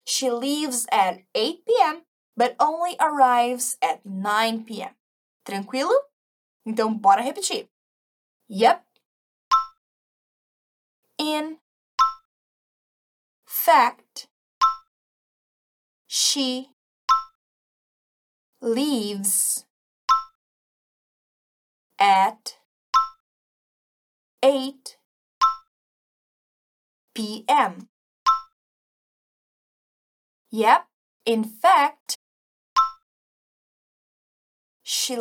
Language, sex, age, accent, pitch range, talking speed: Portuguese, female, 20-39, American, 220-280 Hz, 45 wpm